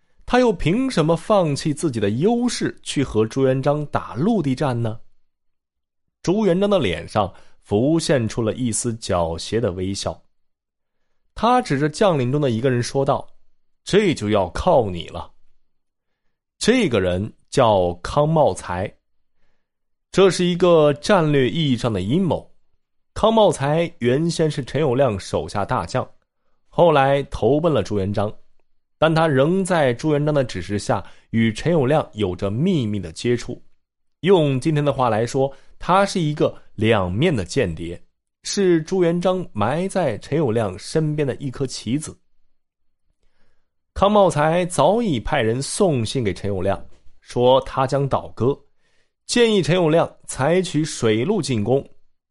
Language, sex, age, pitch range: Chinese, male, 20-39, 105-165 Hz